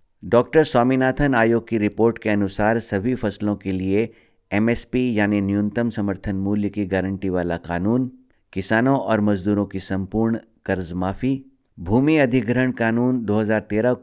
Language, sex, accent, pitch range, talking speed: Hindi, male, native, 100-120 Hz, 135 wpm